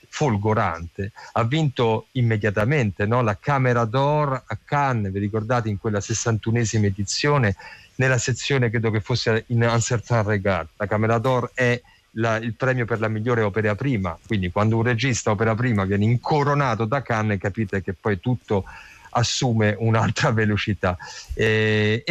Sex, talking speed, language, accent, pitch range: male, 145 wpm, Italian, native, 105-135 Hz